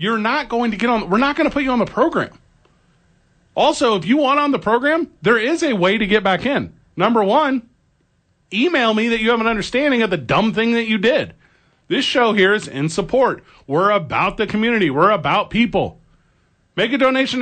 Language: English